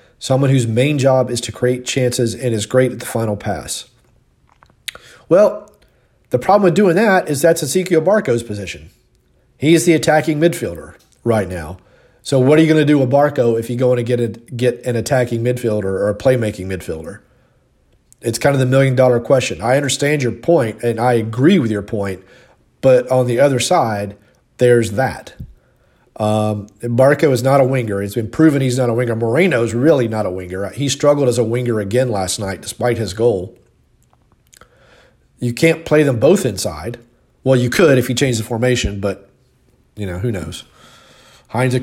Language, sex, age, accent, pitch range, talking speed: English, male, 40-59, American, 110-135 Hz, 185 wpm